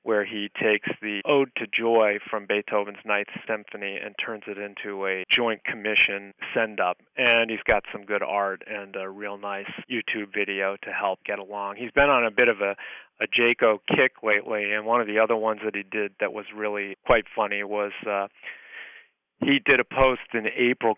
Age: 40-59